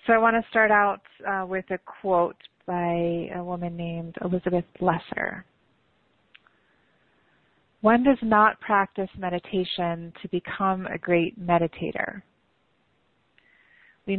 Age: 30-49